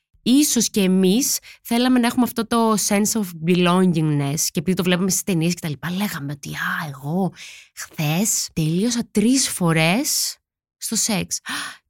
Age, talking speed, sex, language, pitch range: 20-39, 155 wpm, female, Greek, 180-270 Hz